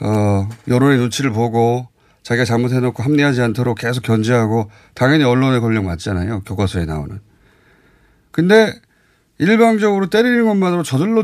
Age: 30-49